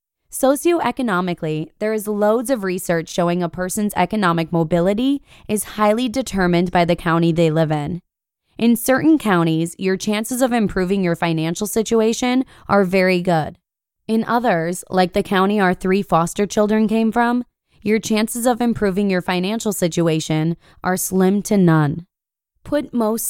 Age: 20-39